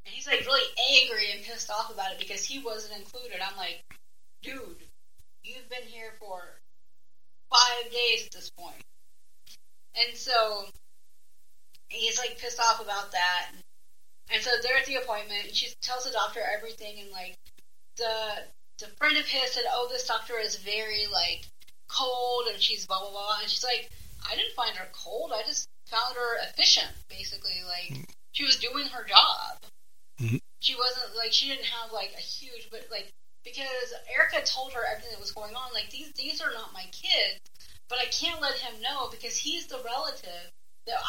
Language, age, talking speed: English, 30-49, 180 wpm